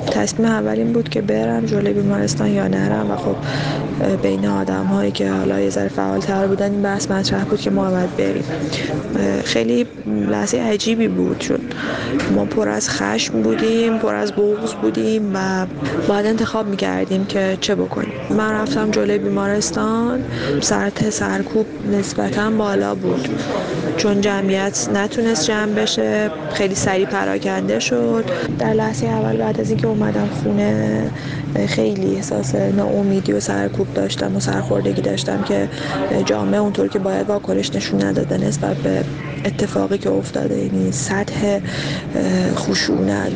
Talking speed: 135 wpm